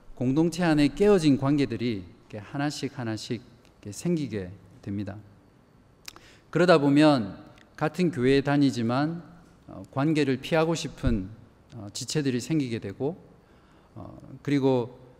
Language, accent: Korean, native